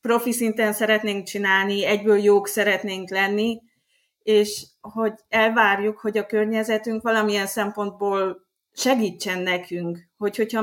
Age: 30-49